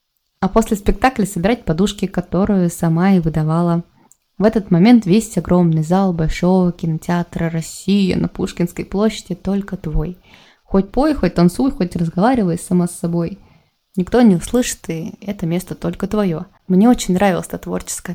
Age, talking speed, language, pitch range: 20-39, 150 wpm, Russian, 175-215 Hz